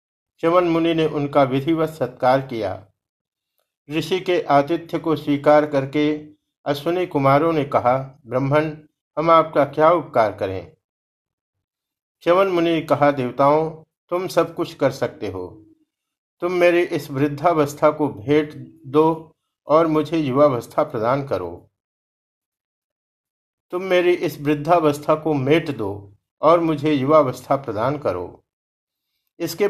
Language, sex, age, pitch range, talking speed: Hindi, male, 50-69, 140-165 Hz, 115 wpm